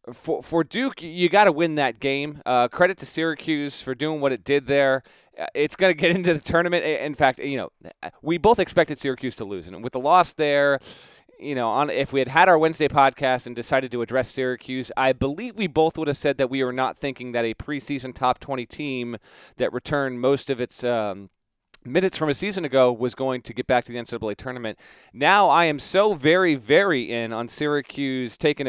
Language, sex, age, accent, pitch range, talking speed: English, male, 30-49, American, 125-160 Hz, 220 wpm